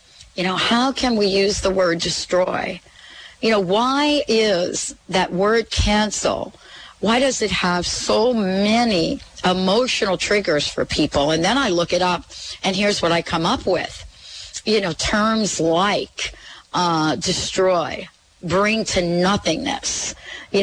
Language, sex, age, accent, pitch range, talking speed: English, female, 40-59, American, 175-220 Hz, 145 wpm